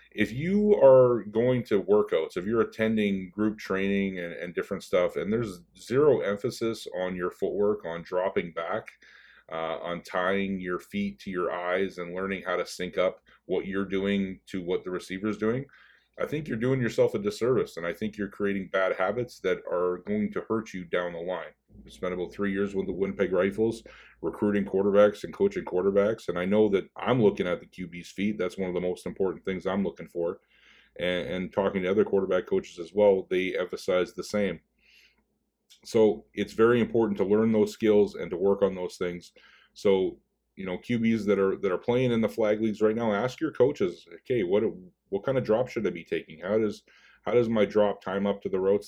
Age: 40-59